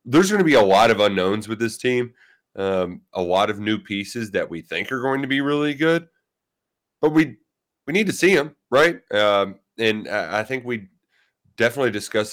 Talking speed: 205 wpm